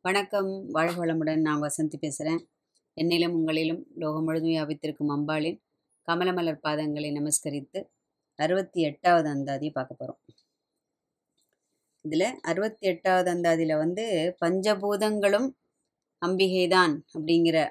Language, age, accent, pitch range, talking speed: Tamil, 20-39, native, 155-200 Hz, 85 wpm